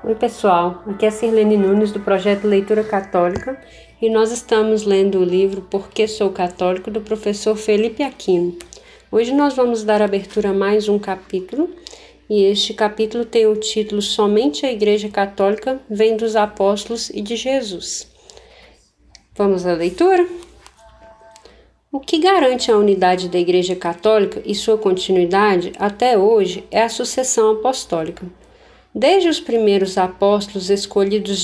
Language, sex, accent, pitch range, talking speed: Portuguese, female, Brazilian, 200-235 Hz, 140 wpm